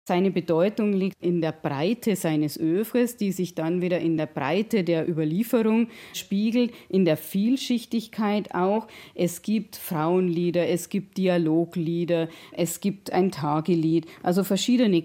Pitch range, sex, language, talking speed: 165-210 Hz, female, German, 135 wpm